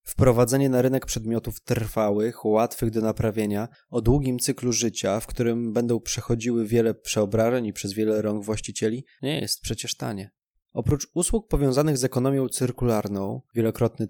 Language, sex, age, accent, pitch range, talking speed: Polish, male, 20-39, native, 110-125 Hz, 145 wpm